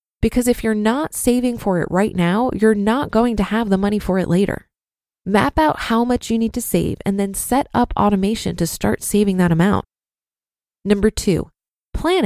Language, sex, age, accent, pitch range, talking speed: English, female, 20-39, American, 195-260 Hz, 195 wpm